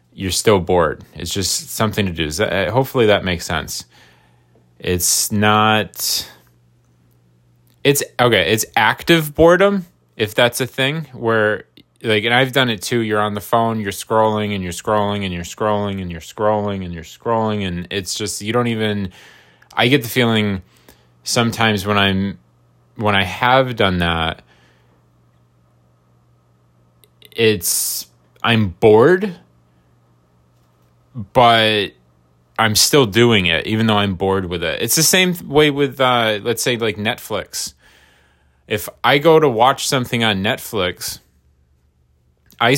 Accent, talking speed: American, 140 wpm